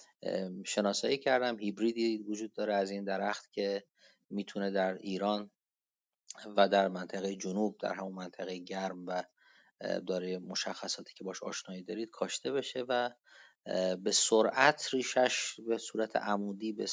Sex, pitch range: male, 95-110 Hz